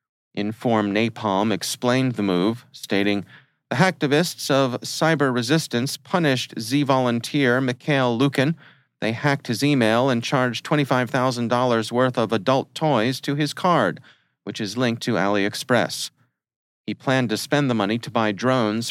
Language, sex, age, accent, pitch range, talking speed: English, male, 40-59, American, 105-135 Hz, 135 wpm